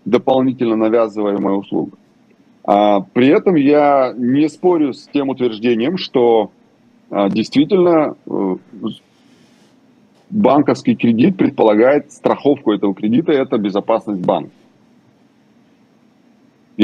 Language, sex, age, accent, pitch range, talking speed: Russian, male, 30-49, native, 115-155 Hz, 85 wpm